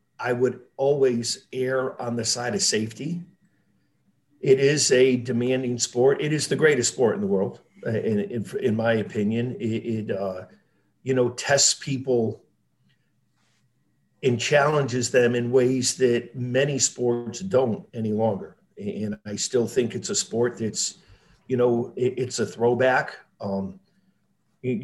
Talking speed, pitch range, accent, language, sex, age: 145 wpm, 115-135 Hz, American, English, male, 50-69